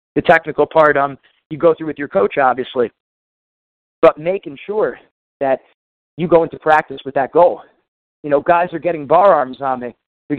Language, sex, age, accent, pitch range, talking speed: English, male, 40-59, American, 135-165 Hz, 185 wpm